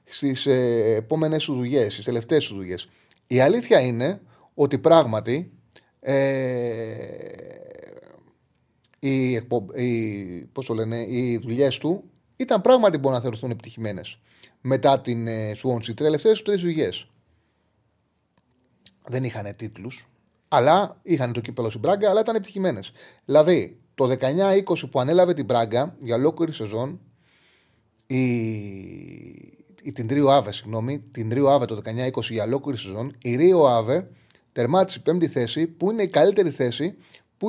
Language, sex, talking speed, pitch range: Greek, male, 130 wpm, 120-185 Hz